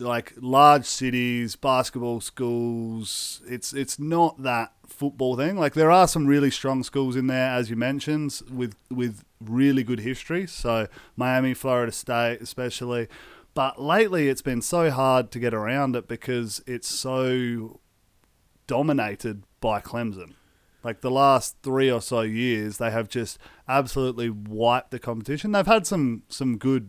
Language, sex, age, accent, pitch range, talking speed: English, male, 30-49, Australian, 115-140 Hz, 150 wpm